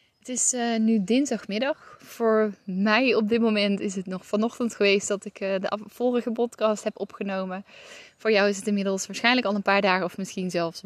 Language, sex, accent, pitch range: Dutch, female, Dutch, 185-215 Hz